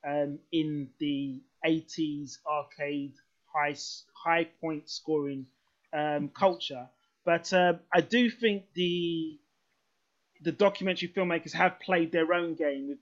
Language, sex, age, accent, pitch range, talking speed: English, male, 20-39, British, 145-175 Hz, 110 wpm